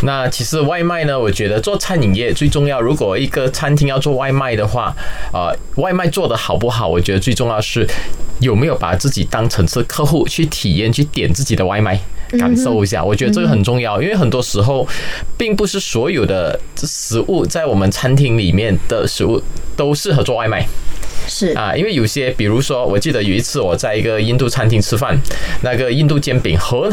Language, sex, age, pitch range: Chinese, male, 20-39, 100-140 Hz